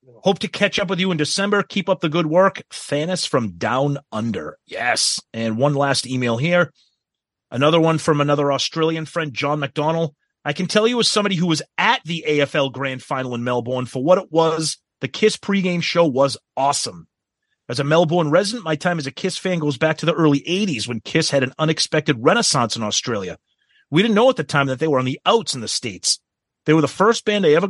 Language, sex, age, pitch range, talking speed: English, male, 30-49, 130-185 Hz, 220 wpm